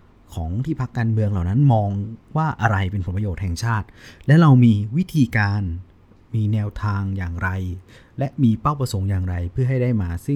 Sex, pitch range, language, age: male, 95-120 Hz, Thai, 30-49